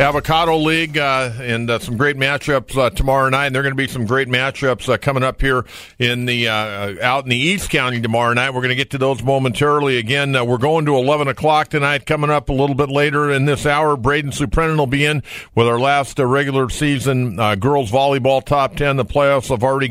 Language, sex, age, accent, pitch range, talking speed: English, male, 50-69, American, 125-150 Hz, 235 wpm